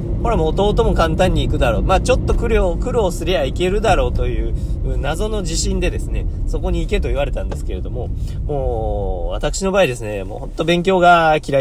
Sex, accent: male, native